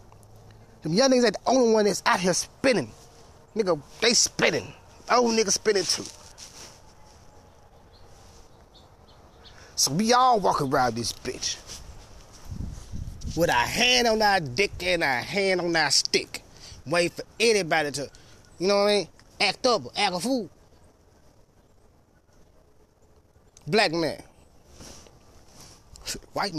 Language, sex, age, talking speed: English, male, 30-49, 125 wpm